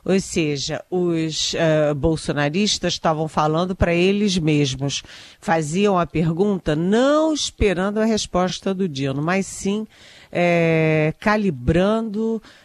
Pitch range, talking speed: 150-185 Hz, 100 wpm